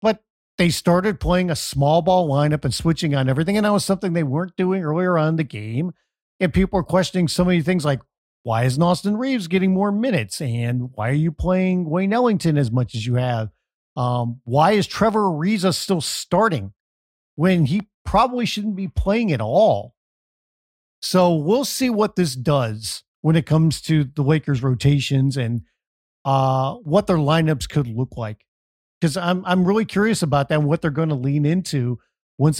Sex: male